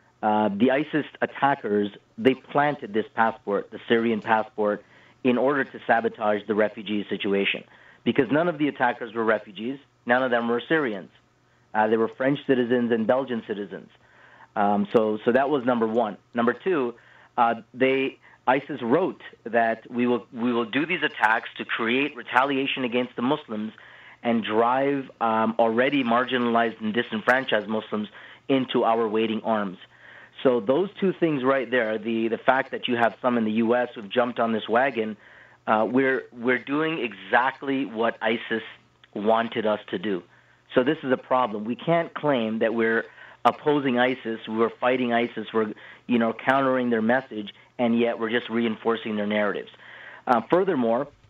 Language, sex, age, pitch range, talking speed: English, male, 30-49, 110-130 Hz, 165 wpm